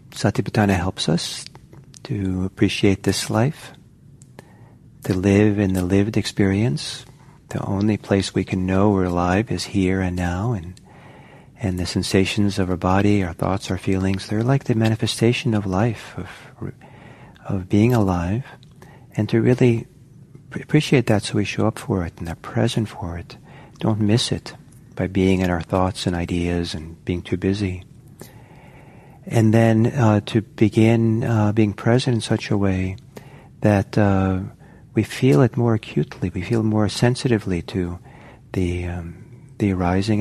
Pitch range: 95-125 Hz